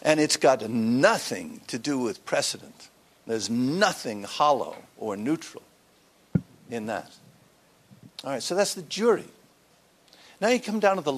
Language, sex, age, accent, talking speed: English, male, 50-69, American, 145 wpm